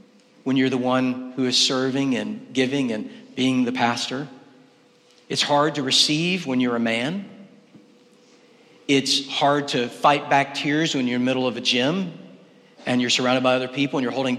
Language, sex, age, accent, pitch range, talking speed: English, male, 40-59, American, 130-145 Hz, 185 wpm